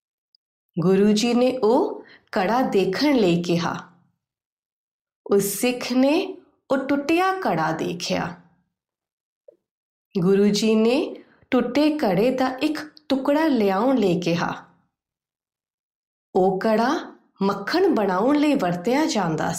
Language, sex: Punjabi, female